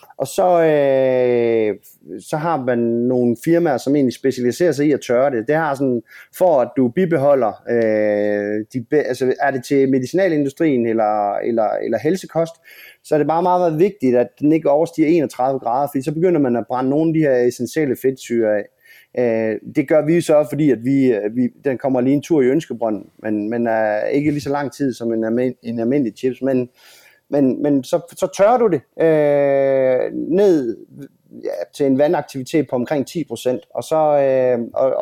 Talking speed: 190 wpm